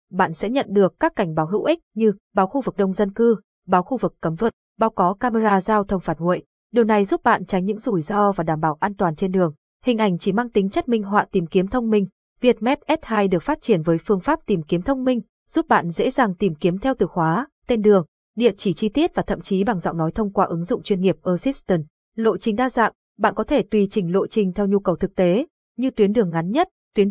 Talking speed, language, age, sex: 260 wpm, Vietnamese, 20-39, female